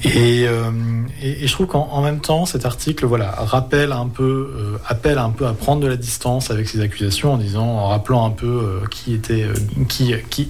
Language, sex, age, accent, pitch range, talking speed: French, male, 40-59, French, 105-125 Hz, 230 wpm